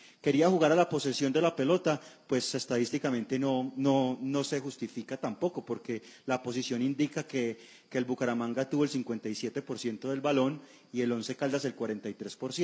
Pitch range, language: 120-145 Hz, Spanish